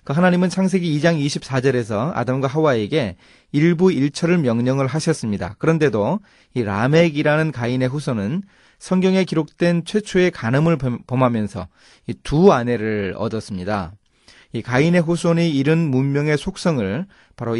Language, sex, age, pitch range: Korean, male, 30-49, 110-160 Hz